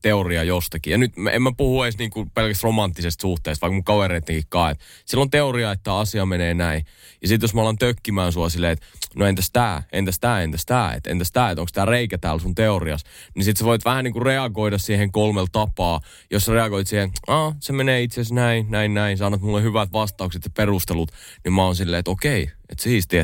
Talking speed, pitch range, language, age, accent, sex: 220 wpm, 90-115 Hz, Finnish, 20-39, native, male